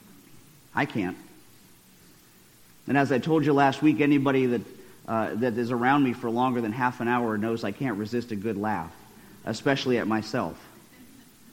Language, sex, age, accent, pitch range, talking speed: English, male, 50-69, American, 120-160 Hz, 165 wpm